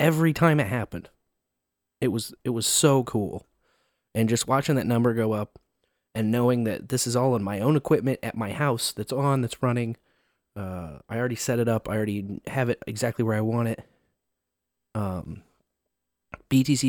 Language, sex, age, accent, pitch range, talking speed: English, male, 30-49, American, 105-130 Hz, 180 wpm